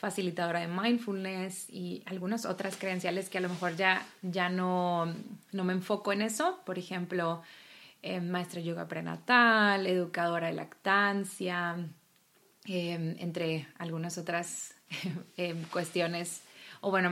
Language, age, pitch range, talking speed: Spanish, 30-49, 170-195 Hz, 130 wpm